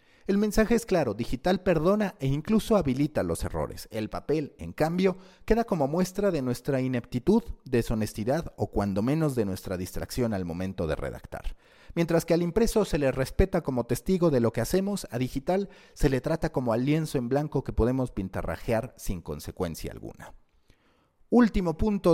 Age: 40-59